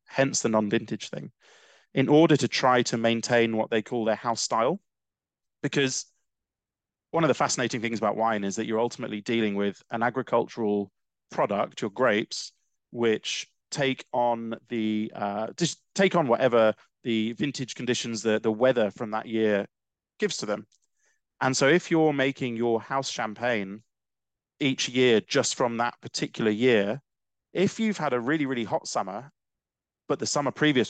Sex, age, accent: male, 30-49, British